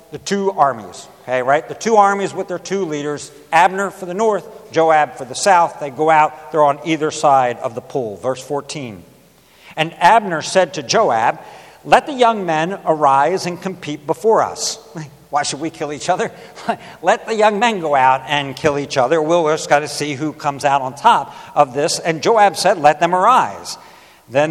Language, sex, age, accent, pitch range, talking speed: English, male, 60-79, American, 145-200 Hz, 195 wpm